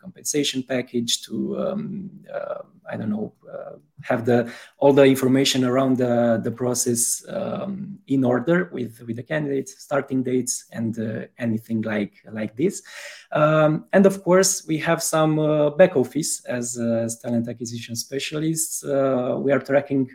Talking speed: 160 wpm